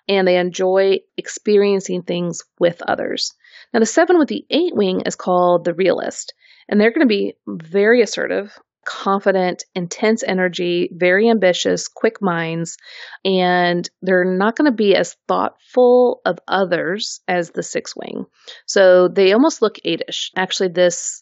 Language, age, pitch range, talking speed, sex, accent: English, 30-49, 180-220 Hz, 150 wpm, female, American